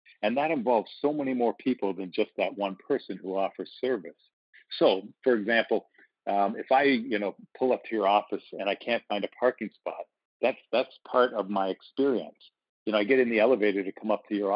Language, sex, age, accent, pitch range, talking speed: English, male, 50-69, American, 100-120 Hz, 220 wpm